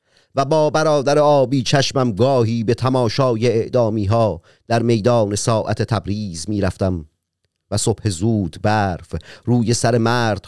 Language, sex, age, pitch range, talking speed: Persian, male, 40-59, 90-120 Hz, 120 wpm